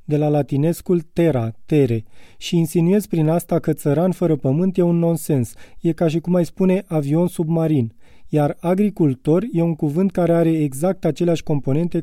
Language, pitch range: Romanian, 145-175 Hz